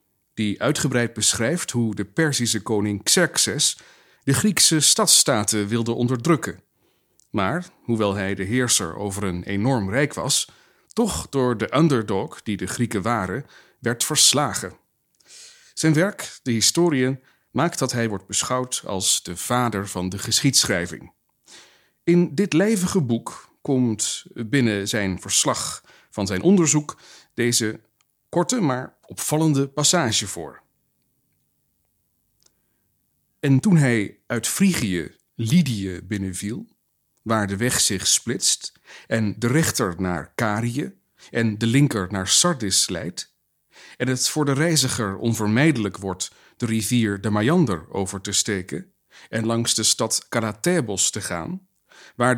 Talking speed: 125 wpm